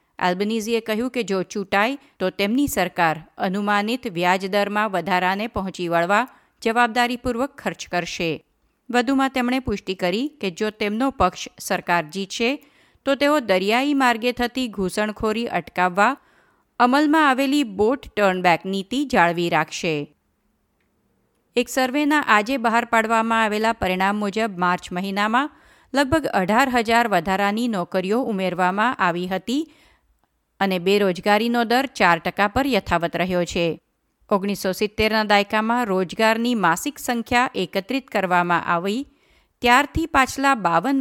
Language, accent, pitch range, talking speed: Gujarati, native, 185-250 Hz, 95 wpm